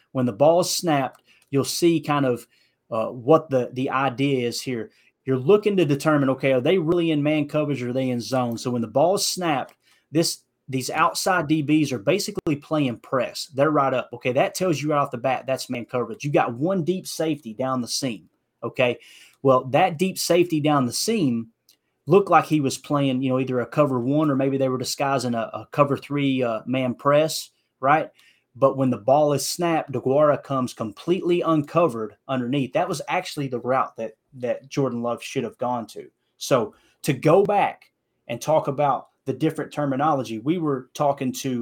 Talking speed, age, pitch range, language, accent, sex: 200 wpm, 30-49, 125-155 Hz, English, American, male